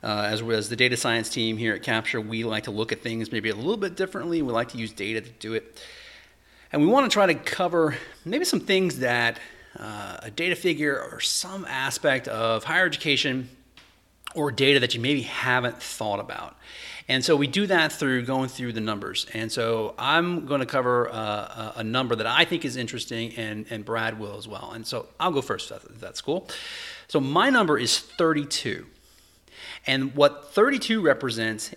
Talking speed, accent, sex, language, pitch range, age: 200 wpm, American, male, English, 110-150 Hz, 40-59